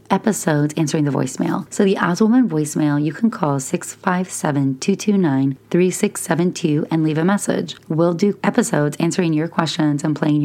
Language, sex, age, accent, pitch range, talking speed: English, female, 30-49, American, 150-200 Hz, 140 wpm